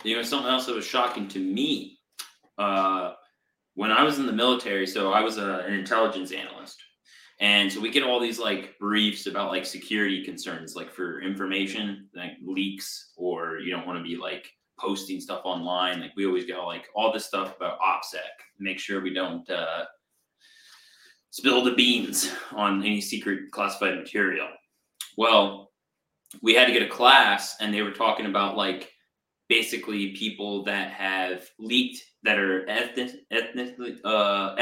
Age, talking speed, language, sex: 20-39, 165 wpm, English, male